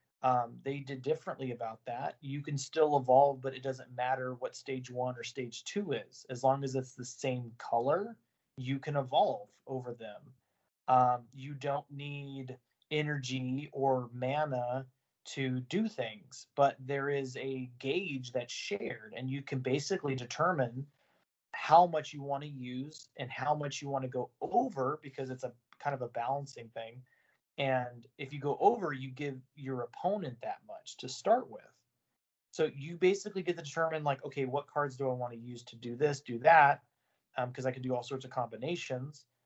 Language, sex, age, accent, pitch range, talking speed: English, male, 30-49, American, 125-140 Hz, 180 wpm